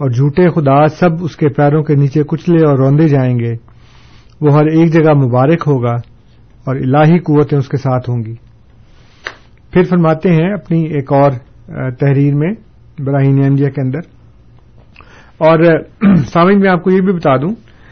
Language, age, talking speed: Urdu, 50-69, 165 wpm